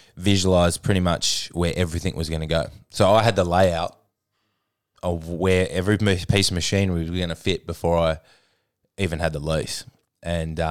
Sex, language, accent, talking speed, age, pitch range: male, English, Australian, 175 wpm, 20-39, 85-95 Hz